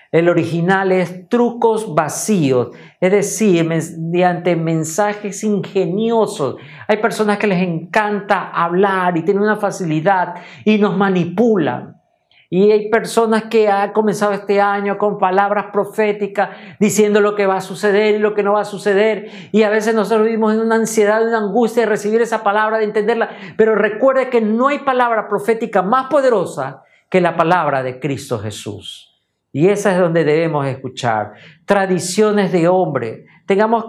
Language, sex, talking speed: Spanish, male, 160 wpm